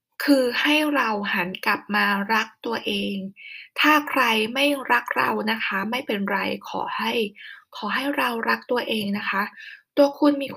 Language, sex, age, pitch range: Thai, female, 20-39, 205-255 Hz